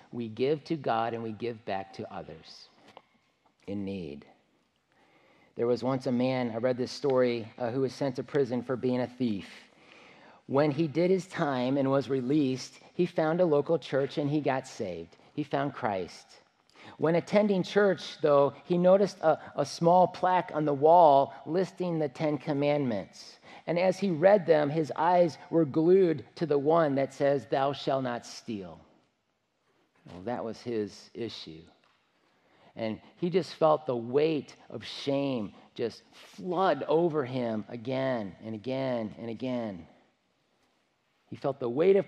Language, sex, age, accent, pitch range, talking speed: English, male, 40-59, American, 120-155 Hz, 160 wpm